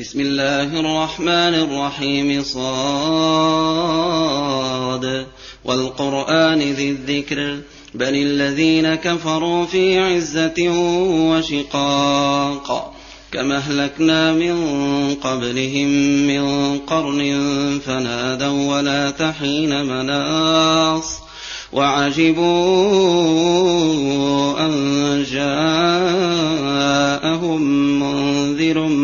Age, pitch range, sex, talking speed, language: 30-49, 140-160 Hz, male, 55 wpm, Arabic